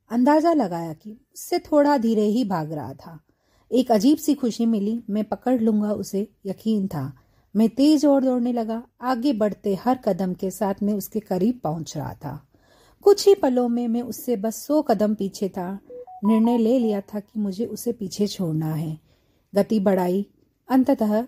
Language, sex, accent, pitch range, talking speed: Hindi, female, native, 185-245 Hz, 170 wpm